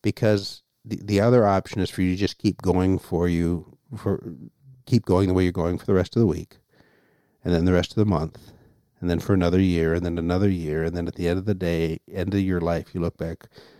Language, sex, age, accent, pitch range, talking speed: English, male, 50-69, American, 85-100 Hz, 250 wpm